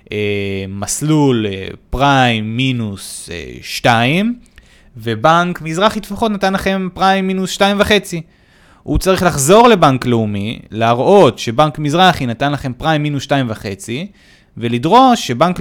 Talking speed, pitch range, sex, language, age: 110 wpm, 110-175 Hz, male, Hebrew, 30-49